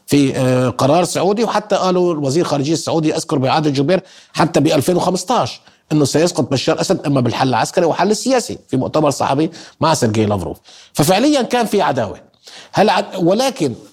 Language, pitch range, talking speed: Arabic, 125-175 Hz, 145 wpm